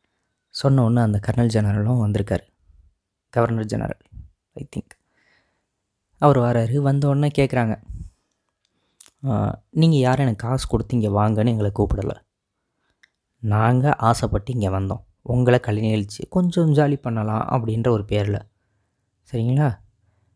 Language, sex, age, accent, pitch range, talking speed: Tamil, female, 20-39, native, 105-125 Hz, 100 wpm